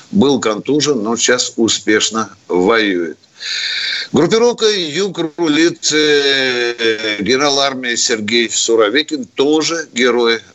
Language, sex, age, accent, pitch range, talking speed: Russian, male, 60-79, native, 120-180 Hz, 85 wpm